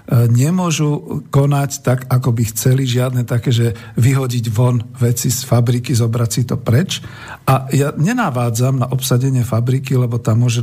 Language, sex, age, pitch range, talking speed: Slovak, male, 50-69, 120-150 Hz, 150 wpm